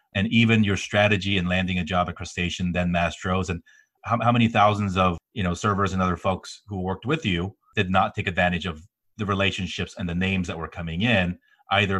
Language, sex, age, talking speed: English, male, 30-49, 215 wpm